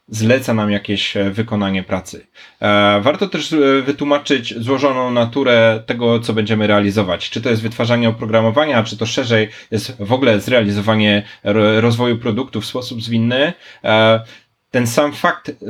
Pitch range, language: 110-130 Hz, Polish